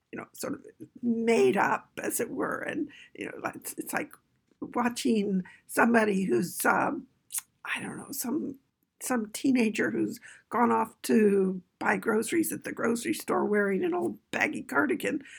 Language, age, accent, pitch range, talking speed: English, 60-79, American, 205-285 Hz, 155 wpm